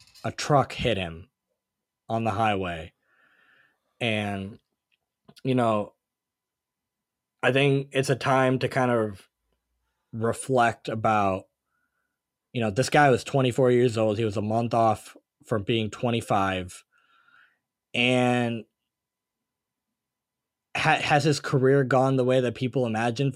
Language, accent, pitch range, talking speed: English, American, 115-140 Hz, 120 wpm